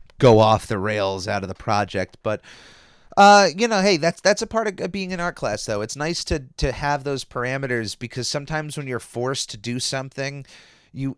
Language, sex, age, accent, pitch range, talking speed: English, male, 30-49, American, 115-140 Hz, 210 wpm